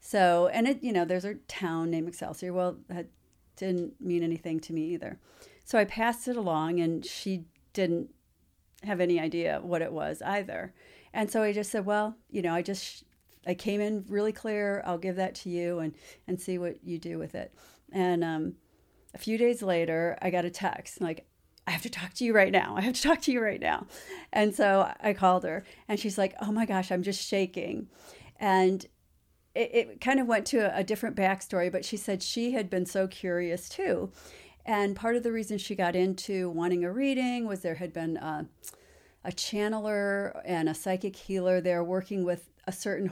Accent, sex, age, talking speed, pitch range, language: American, female, 40-59, 205 wpm, 170-210 Hz, English